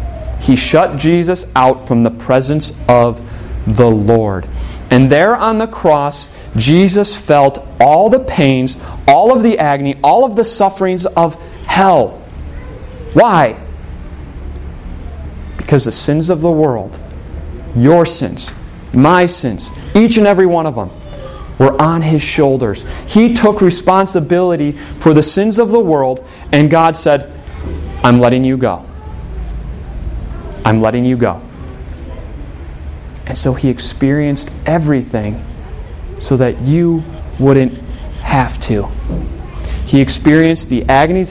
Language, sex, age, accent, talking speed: English, male, 30-49, American, 125 wpm